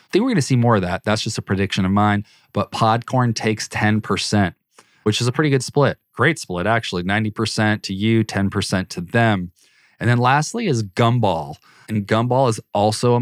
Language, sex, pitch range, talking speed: English, male, 100-125 Hz, 190 wpm